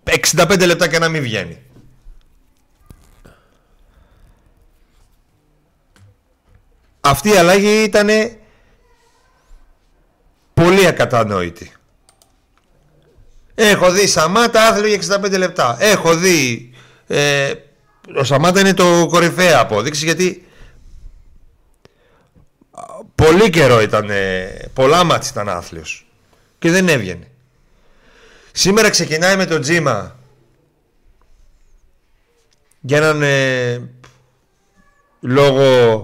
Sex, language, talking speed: male, Greek, 75 wpm